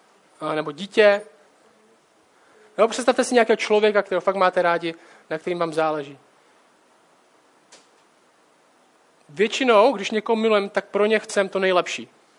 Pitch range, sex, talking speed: 195-240 Hz, male, 120 wpm